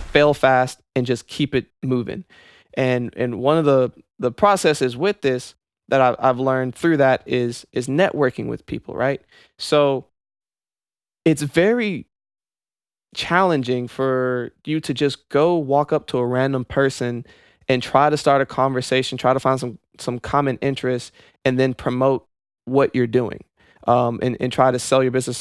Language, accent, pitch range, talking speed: English, American, 125-140 Hz, 170 wpm